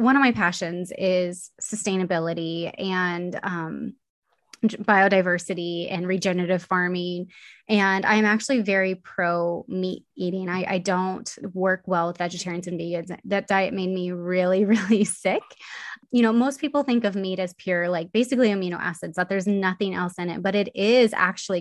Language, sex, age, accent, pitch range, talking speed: English, female, 20-39, American, 180-210 Hz, 160 wpm